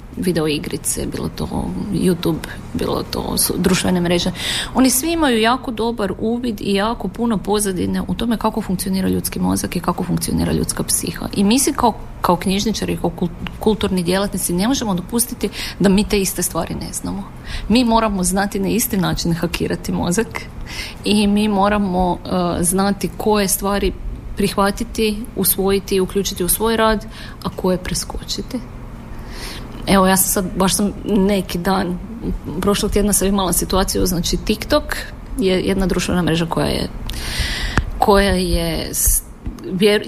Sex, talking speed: female, 145 wpm